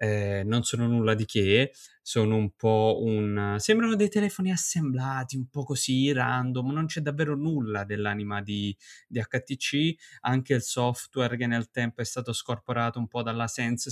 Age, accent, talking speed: 20-39, native, 170 wpm